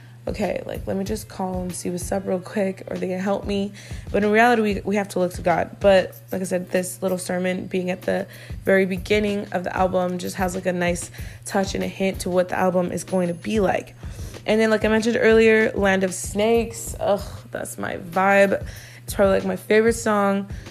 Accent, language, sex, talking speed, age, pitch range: American, English, female, 230 wpm, 20-39, 185-210 Hz